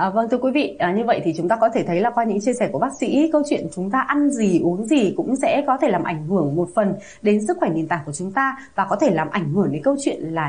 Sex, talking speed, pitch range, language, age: female, 325 wpm, 185-280 Hz, Vietnamese, 20-39